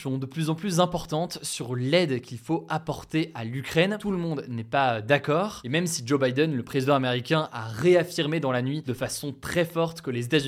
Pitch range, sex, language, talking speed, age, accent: 130-165 Hz, male, French, 225 wpm, 20-39, French